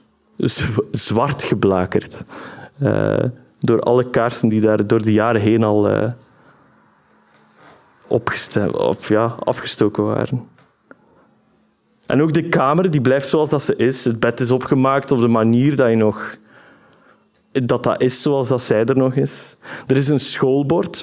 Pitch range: 115-140 Hz